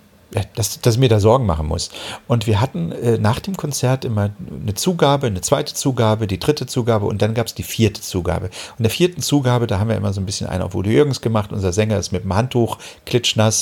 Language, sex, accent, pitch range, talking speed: German, male, German, 95-125 Hz, 240 wpm